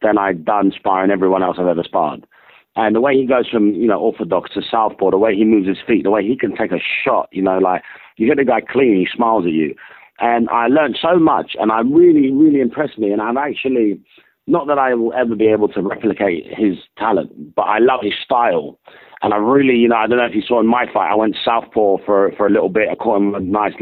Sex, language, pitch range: male, English, 100-130 Hz